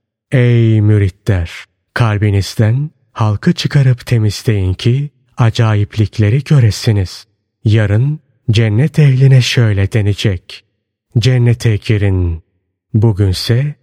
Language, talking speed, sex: Turkish, 75 wpm, male